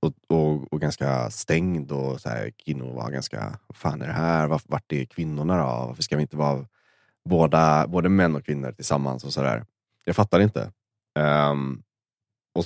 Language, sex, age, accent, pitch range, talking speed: Swedish, male, 20-39, native, 75-110 Hz, 185 wpm